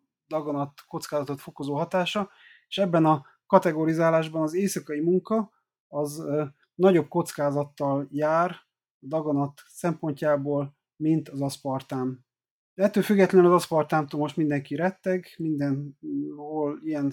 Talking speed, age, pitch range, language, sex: 105 wpm, 30-49, 145-170 Hz, Hungarian, male